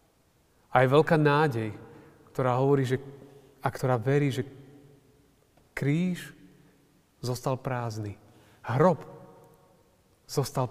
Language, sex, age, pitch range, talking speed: Slovak, male, 40-59, 120-150 Hz, 85 wpm